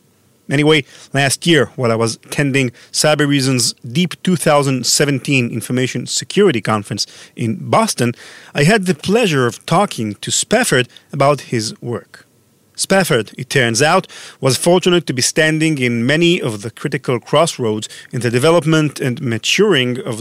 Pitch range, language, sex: 120-165 Hz, English, male